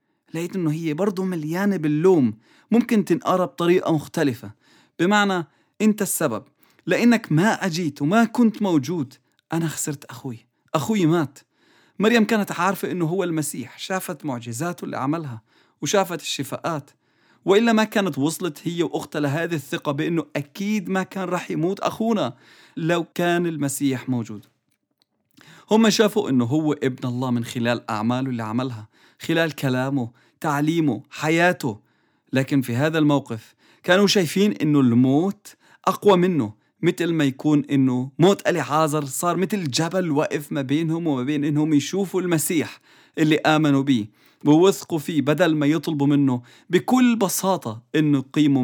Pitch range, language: 140-185 Hz, English